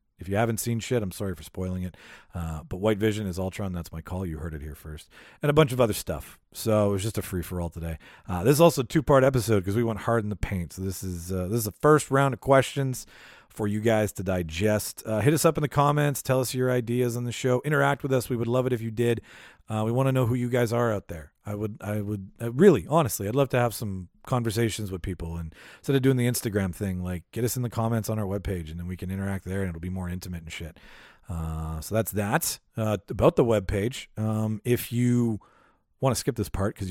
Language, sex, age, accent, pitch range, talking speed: English, male, 40-59, American, 95-125 Hz, 265 wpm